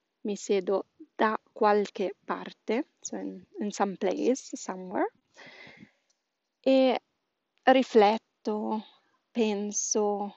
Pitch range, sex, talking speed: 205-245 Hz, female, 80 wpm